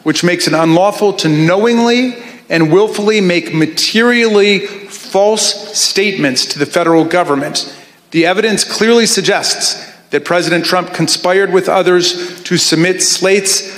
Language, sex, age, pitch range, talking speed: English, male, 40-59, 160-195 Hz, 125 wpm